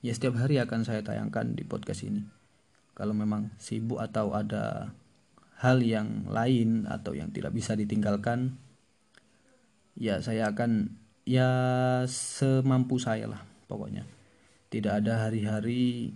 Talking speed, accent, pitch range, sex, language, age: 125 wpm, native, 105-125 Hz, male, Indonesian, 20-39